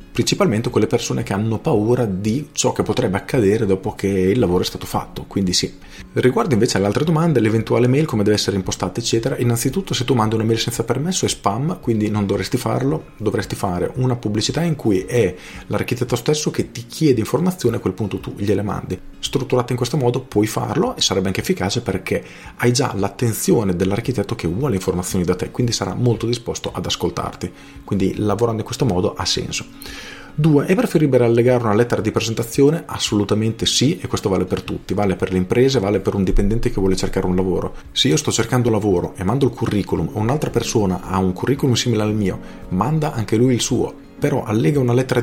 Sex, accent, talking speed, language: male, native, 205 wpm, Italian